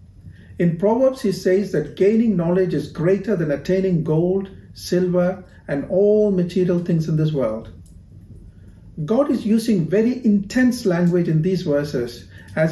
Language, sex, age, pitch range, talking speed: English, male, 50-69, 130-195 Hz, 140 wpm